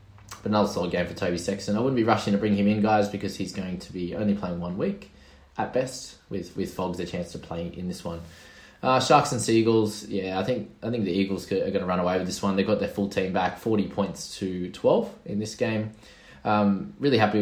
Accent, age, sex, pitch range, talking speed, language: Australian, 20-39, male, 90-110 Hz, 255 wpm, English